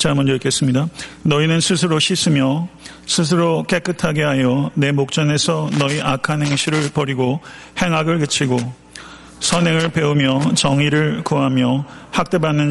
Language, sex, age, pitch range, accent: Korean, male, 40-59, 140-160 Hz, native